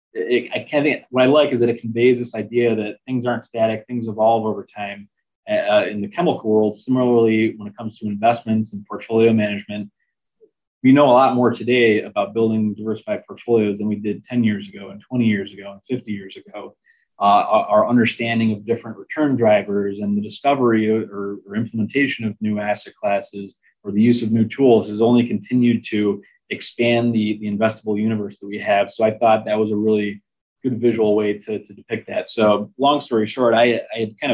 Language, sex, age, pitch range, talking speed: English, male, 20-39, 105-120 Hz, 205 wpm